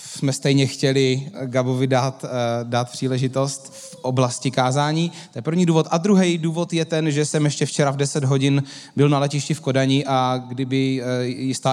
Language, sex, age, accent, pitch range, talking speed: Czech, male, 20-39, native, 125-145 Hz, 175 wpm